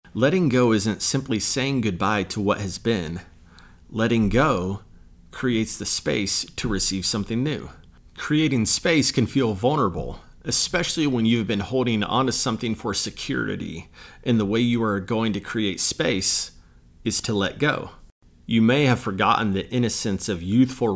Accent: American